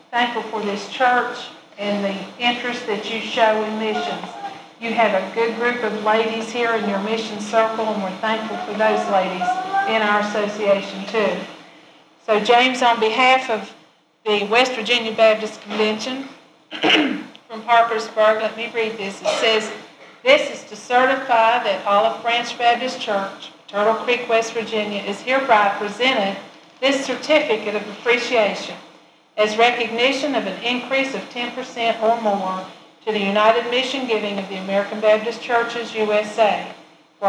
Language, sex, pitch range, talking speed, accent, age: English, female, 205-235 Hz, 150 wpm, American, 50-69